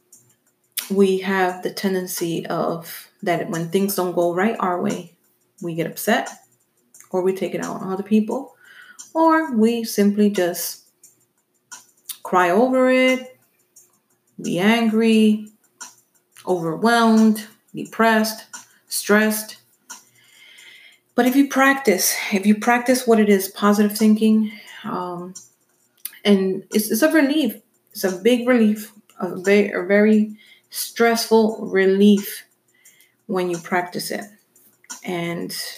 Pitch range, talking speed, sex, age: 185-230 Hz, 115 wpm, female, 30-49